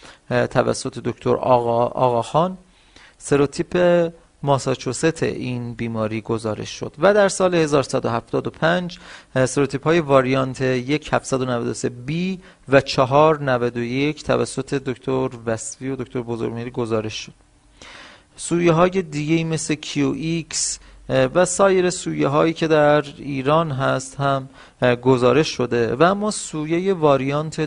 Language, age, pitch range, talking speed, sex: Persian, 40-59, 125-155 Hz, 105 wpm, male